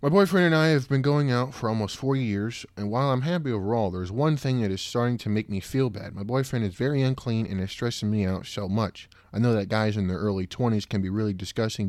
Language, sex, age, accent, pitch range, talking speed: English, male, 20-39, American, 100-120 Hz, 260 wpm